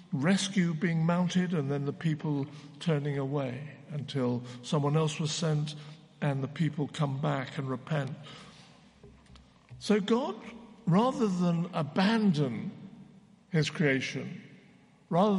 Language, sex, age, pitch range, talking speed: English, male, 60-79, 150-210 Hz, 115 wpm